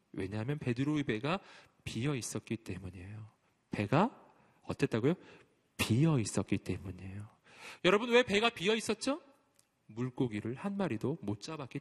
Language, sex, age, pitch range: Korean, male, 40-59, 110-190 Hz